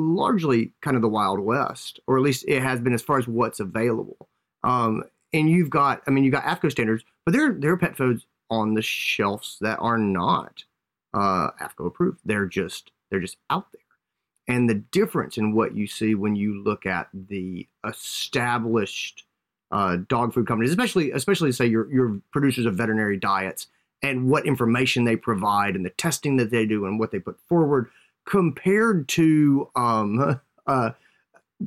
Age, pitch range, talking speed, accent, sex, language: 30-49, 110-140 Hz, 180 wpm, American, male, English